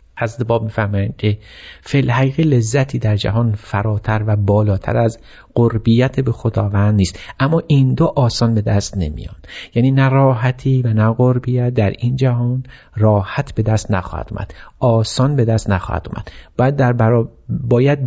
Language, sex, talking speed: Persian, male, 145 wpm